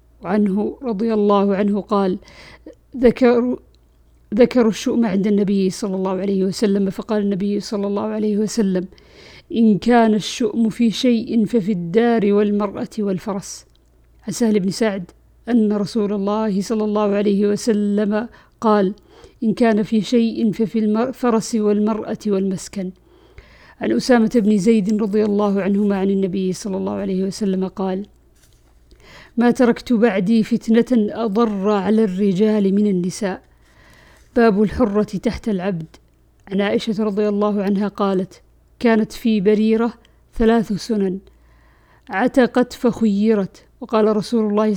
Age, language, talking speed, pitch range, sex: 50-69, Arabic, 120 wpm, 200-225 Hz, female